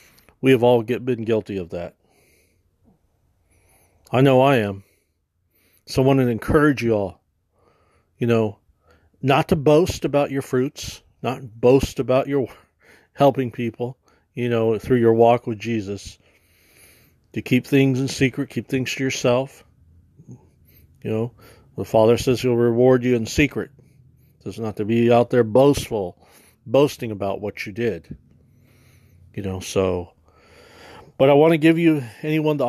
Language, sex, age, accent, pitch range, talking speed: English, male, 40-59, American, 100-130 Hz, 150 wpm